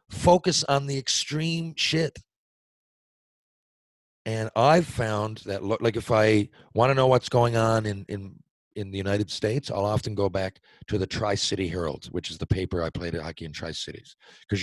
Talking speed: 180 wpm